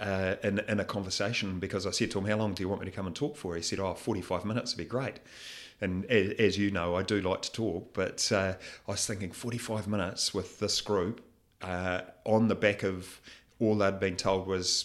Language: English